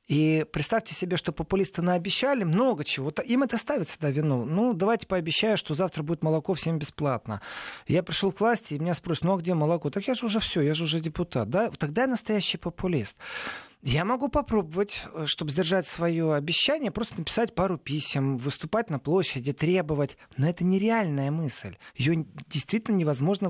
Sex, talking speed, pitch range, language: male, 175 wpm, 150-200 Hz, Russian